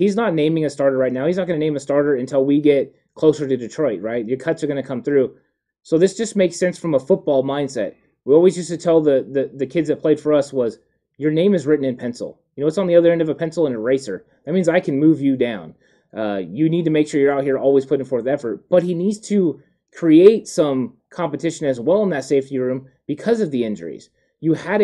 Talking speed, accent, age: 260 wpm, American, 30-49